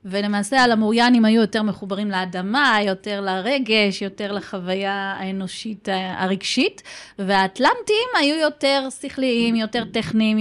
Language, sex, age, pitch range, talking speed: Hebrew, female, 20-39, 215-280 Hz, 110 wpm